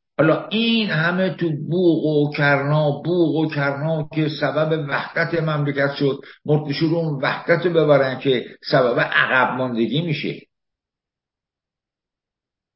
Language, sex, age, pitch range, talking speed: Persian, male, 60-79, 150-175 Hz, 120 wpm